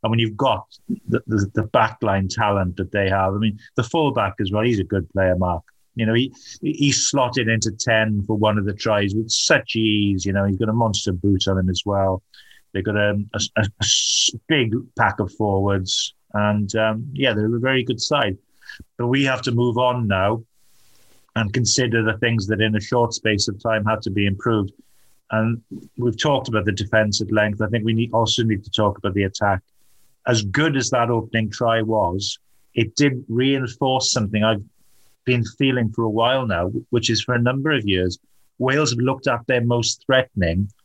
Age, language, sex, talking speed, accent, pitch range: 30-49, English, male, 205 wpm, British, 105-125 Hz